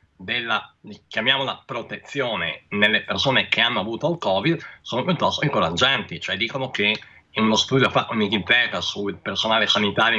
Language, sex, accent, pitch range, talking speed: Italian, male, native, 115-160 Hz, 145 wpm